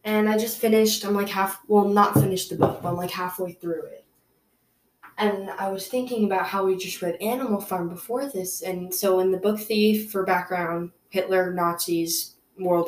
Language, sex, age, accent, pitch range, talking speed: English, female, 10-29, American, 170-225 Hz, 195 wpm